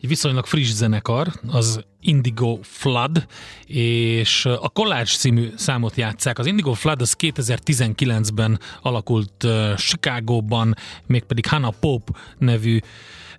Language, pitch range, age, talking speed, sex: Hungarian, 110-135 Hz, 30-49, 105 wpm, male